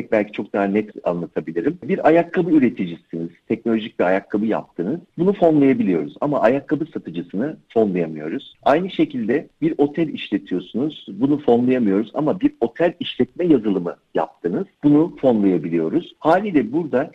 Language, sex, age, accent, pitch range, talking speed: Turkish, male, 50-69, native, 100-160 Hz, 125 wpm